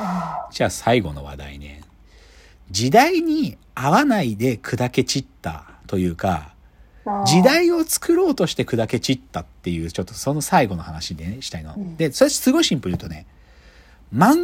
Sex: male